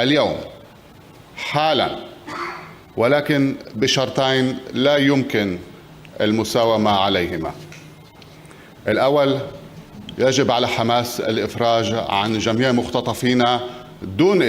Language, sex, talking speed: French, male, 70 wpm